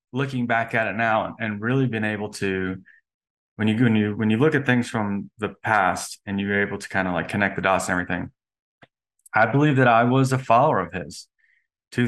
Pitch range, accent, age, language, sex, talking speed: 95-120 Hz, American, 20-39, English, male, 225 wpm